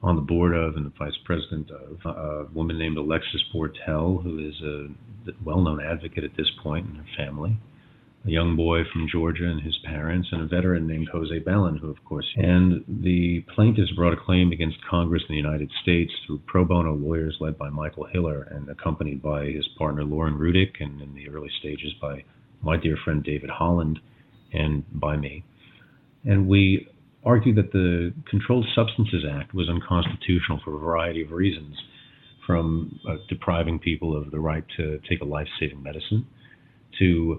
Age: 40-59